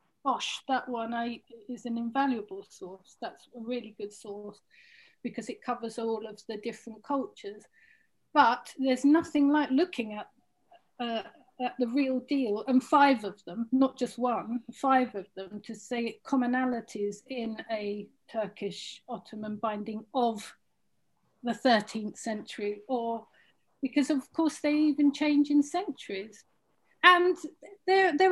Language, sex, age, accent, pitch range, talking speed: English, female, 40-59, British, 230-310 Hz, 135 wpm